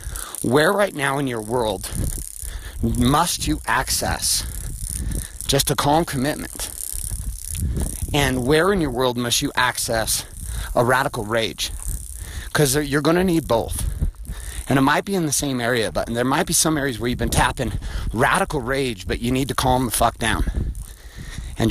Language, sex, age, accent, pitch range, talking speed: English, male, 30-49, American, 90-140 Hz, 165 wpm